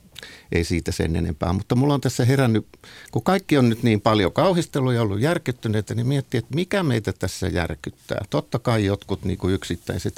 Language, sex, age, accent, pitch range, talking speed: Finnish, male, 60-79, native, 95-130 Hz, 190 wpm